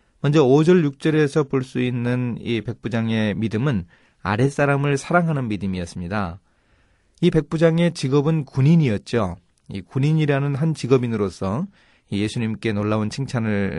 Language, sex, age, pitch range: Korean, male, 30-49, 105-145 Hz